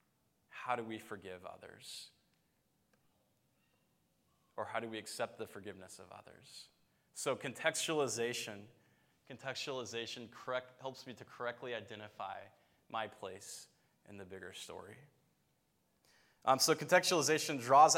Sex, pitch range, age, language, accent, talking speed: male, 110-140 Hz, 20-39, English, American, 110 wpm